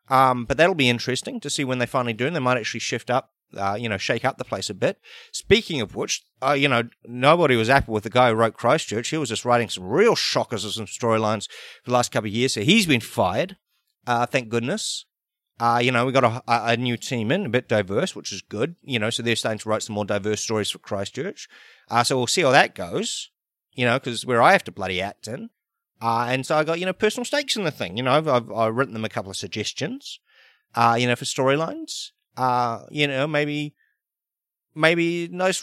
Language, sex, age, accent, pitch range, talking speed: English, male, 30-49, Australian, 115-170 Hz, 240 wpm